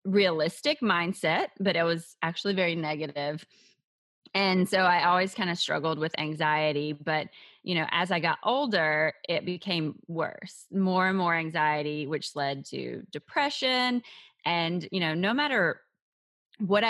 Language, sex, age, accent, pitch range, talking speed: English, female, 20-39, American, 155-205 Hz, 145 wpm